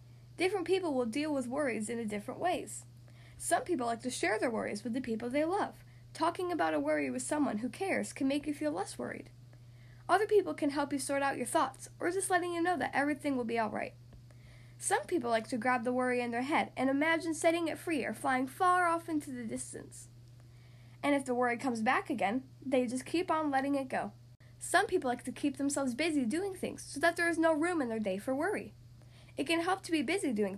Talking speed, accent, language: 230 wpm, American, English